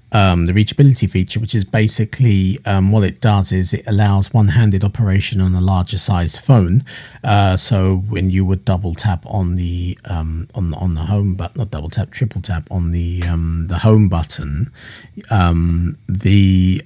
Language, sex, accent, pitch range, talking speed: English, male, British, 95-120 Hz, 180 wpm